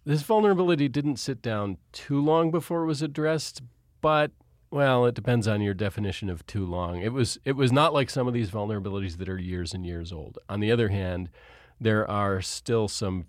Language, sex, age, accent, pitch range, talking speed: English, male, 40-59, American, 95-125 Hz, 205 wpm